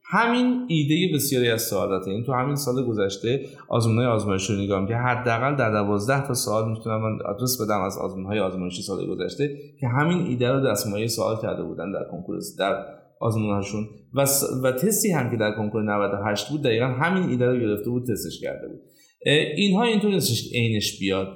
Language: Persian